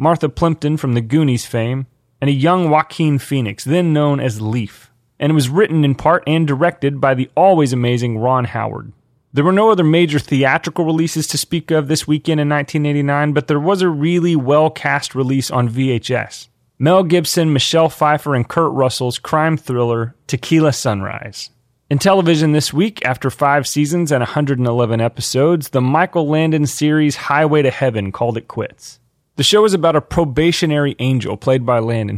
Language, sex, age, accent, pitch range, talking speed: English, male, 30-49, American, 125-155 Hz, 175 wpm